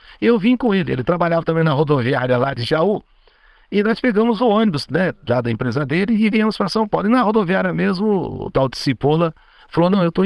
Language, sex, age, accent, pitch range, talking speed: Portuguese, male, 60-79, Brazilian, 125-185 Hz, 230 wpm